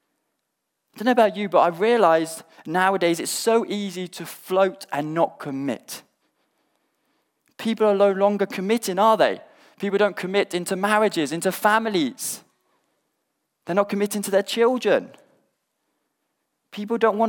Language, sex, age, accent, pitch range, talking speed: English, male, 20-39, British, 170-225 Hz, 140 wpm